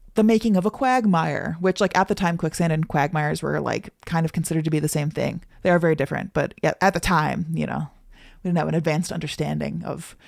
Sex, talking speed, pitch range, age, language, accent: female, 240 wpm, 155-205 Hz, 30-49, English, American